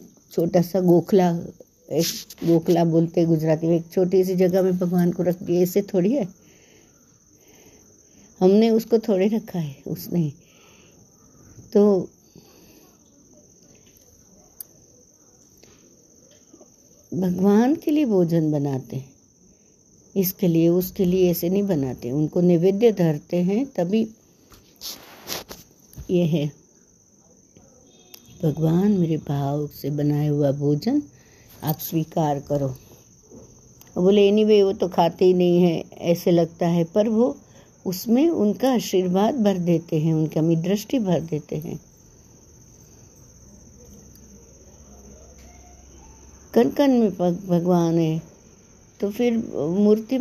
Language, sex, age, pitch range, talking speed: Hindi, female, 60-79, 160-205 Hz, 95 wpm